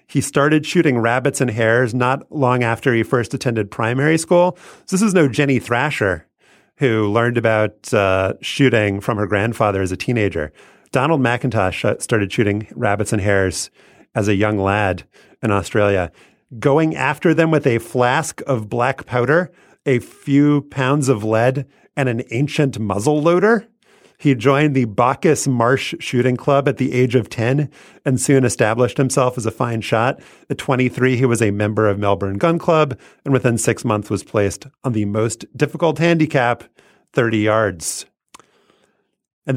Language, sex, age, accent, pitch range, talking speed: English, male, 30-49, American, 110-145 Hz, 160 wpm